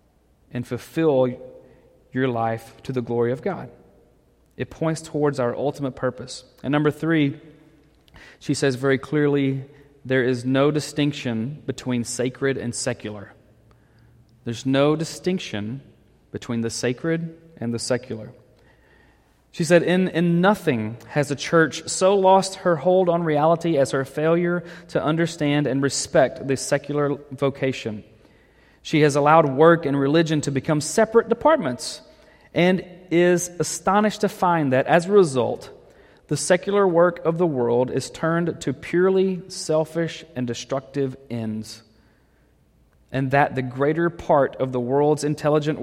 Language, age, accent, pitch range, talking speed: English, 30-49, American, 125-165 Hz, 135 wpm